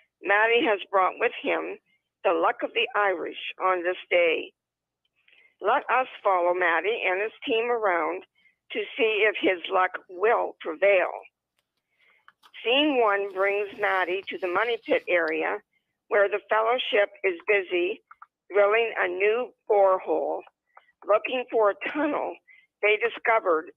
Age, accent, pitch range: 50-69, American, 190-320 Hz